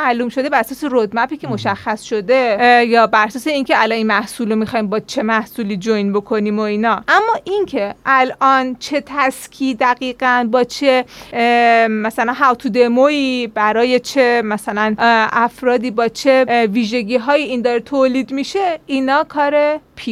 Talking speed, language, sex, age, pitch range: 155 wpm, Persian, female, 30-49, 230-285 Hz